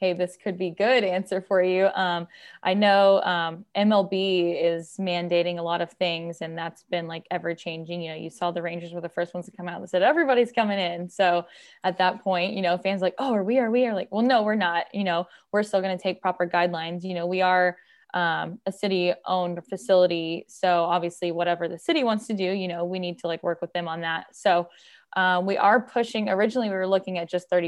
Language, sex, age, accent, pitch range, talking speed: English, female, 10-29, American, 175-195 Hz, 240 wpm